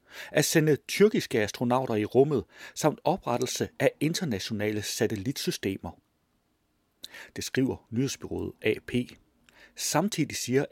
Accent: native